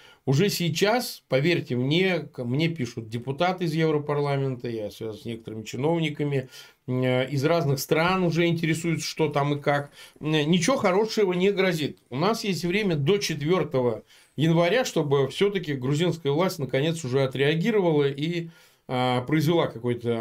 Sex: male